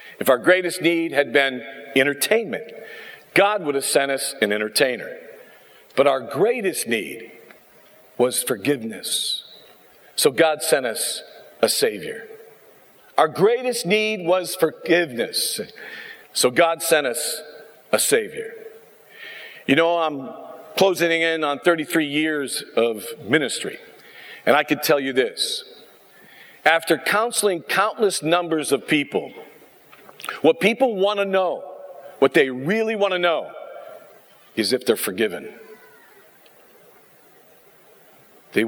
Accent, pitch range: American, 145-240 Hz